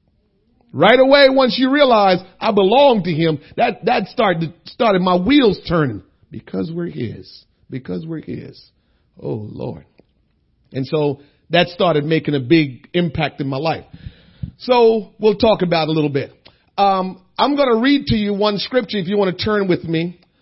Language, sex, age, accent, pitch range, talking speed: English, male, 40-59, American, 160-210 Hz, 170 wpm